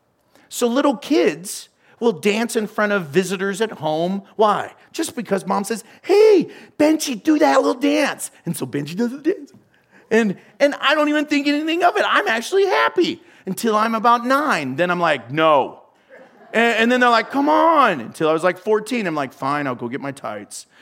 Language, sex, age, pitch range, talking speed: English, male, 40-59, 160-245 Hz, 195 wpm